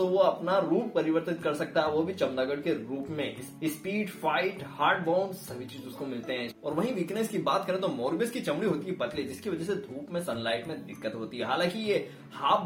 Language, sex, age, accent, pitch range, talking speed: Hindi, male, 20-39, native, 130-180 Hz, 140 wpm